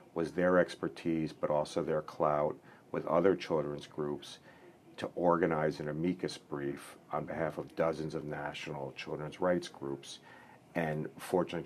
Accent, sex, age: American, male, 40-59